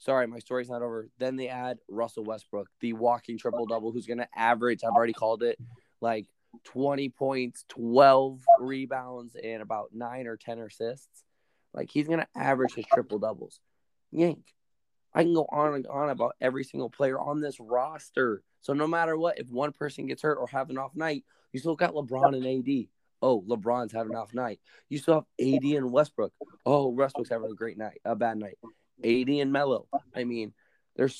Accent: American